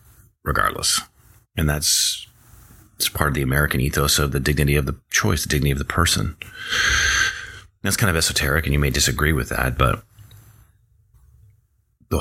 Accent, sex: American, male